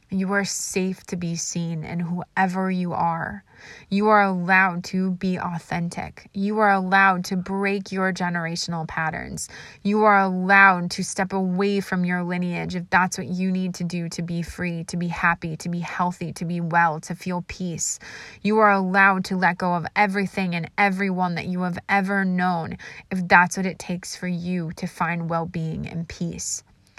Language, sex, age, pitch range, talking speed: English, female, 20-39, 175-195 Hz, 180 wpm